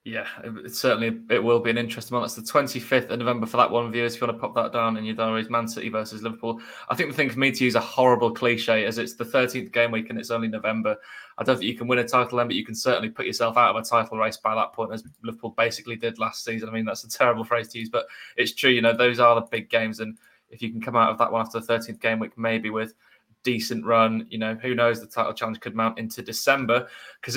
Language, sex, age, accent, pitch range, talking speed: English, male, 20-39, British, 110-120 Hz, 285 wpm